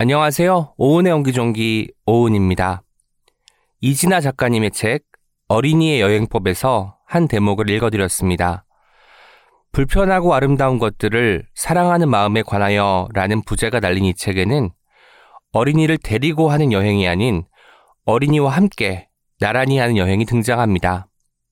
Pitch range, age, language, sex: 105-150 Hz, 20-39, Korean, male